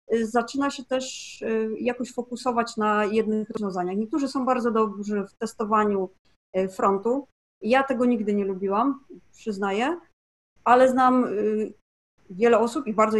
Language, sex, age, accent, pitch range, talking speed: Polish, female, 30-49, native, 210-255 Hz, 125 wpm